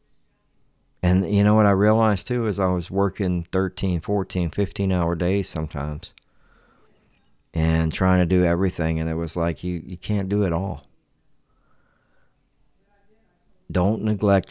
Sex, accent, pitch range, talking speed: male, American, 85-100 Hz, 135 wpm